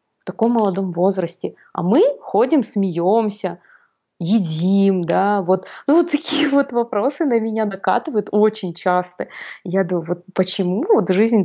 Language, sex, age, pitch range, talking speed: Russian, female, 20-39, 170-205 Hz, 140 wpm